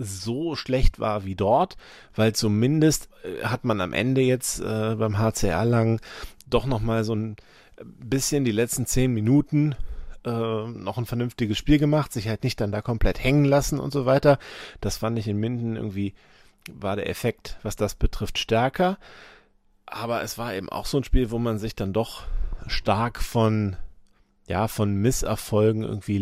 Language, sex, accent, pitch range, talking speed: German, male, German, 100-120 Hz, 170 wpm